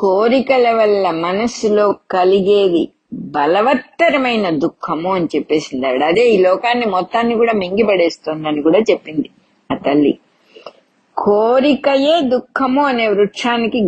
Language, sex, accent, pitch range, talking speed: English, female, Indian, 180-265 Hz, 110 wpm